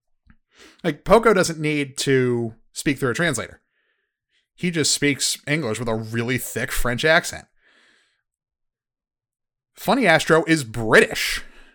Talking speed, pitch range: 115 wpm, 125-185 Hz